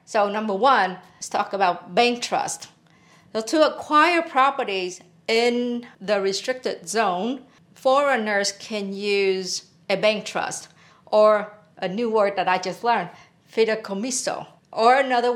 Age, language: 50-69, English